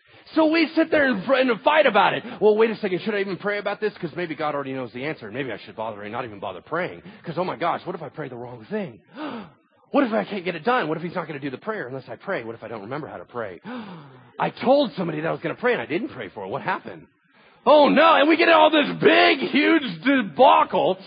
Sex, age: male, 40-59